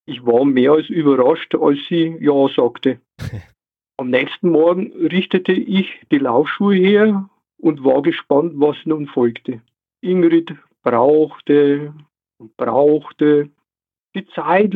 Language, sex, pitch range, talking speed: German, male, 140-195 Hz, 120 wpm